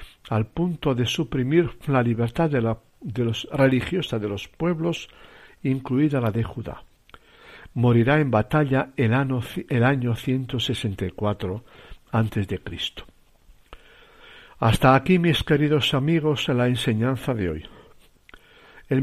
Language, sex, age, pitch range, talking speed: Spanish, male, 60-79, 115-155 Hz, 115 wpm